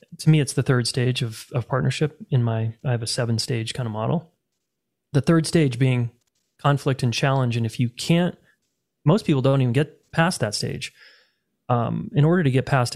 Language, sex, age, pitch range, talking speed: English, male, 30-49, 120-140 Hz, 205 wpm